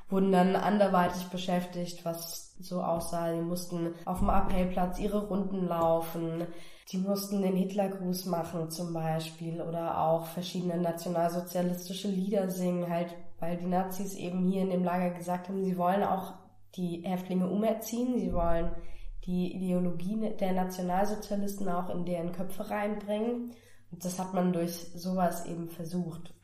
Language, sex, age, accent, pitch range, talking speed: German, female, 20-39, German, 170-195 Hz, 145 wpm